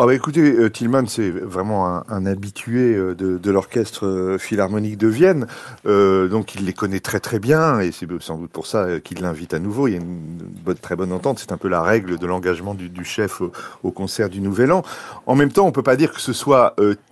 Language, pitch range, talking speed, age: French, 100-140 Hz, 240 wpm, 40-59